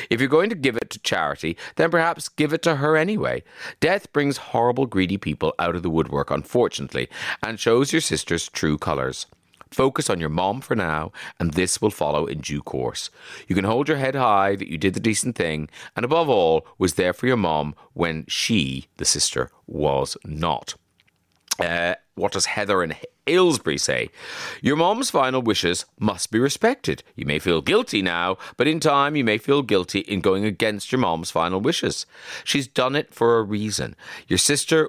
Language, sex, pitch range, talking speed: English, male, 80-130 Hz, 190 wpm